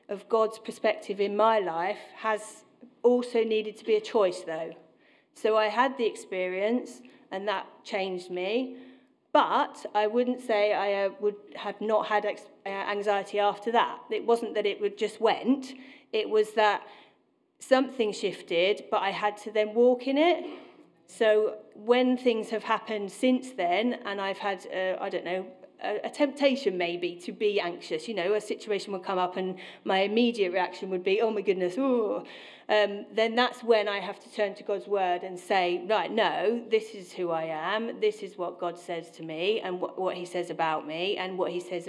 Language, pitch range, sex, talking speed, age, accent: English, 190-235 Hz, female, 190 wpm, 40-59, British